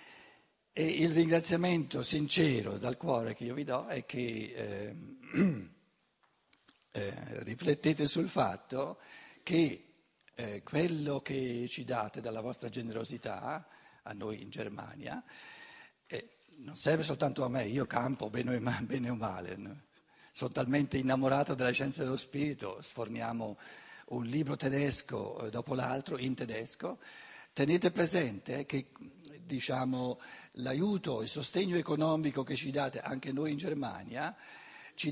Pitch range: 120-155 Hz